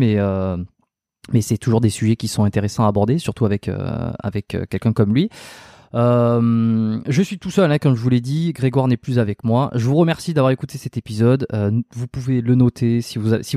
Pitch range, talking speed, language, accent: 105-130 Hz, 220 wpm, French, French